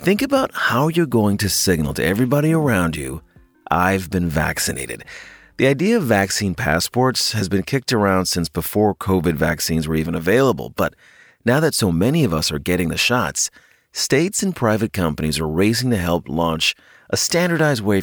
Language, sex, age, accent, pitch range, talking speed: English, male, 40-59, American, 85-125 Hz, 175 wpm